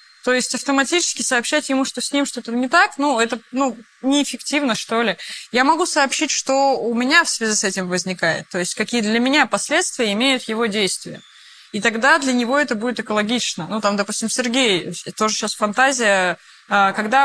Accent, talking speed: native, 180 wpm